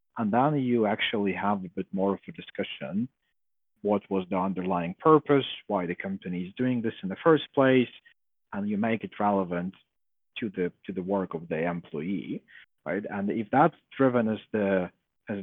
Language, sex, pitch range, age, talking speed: English, male, 95-140 Hz, 40-59, 185 wpm